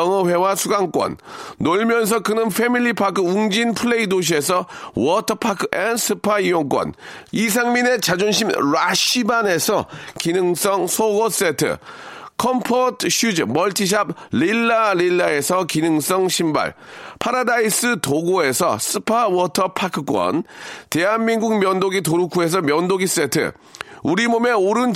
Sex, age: male, 40-59